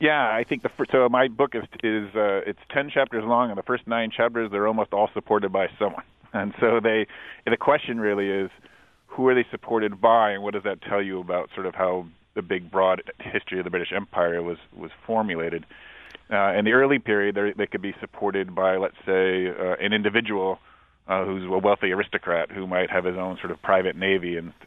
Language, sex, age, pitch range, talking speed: English, male, 30-49, 90-110 Hz, 220 wpm